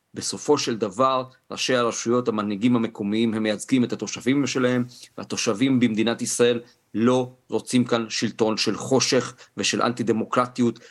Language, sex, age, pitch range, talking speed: Hebrew, male, 40-59, 110-130 Hz, 130 wpm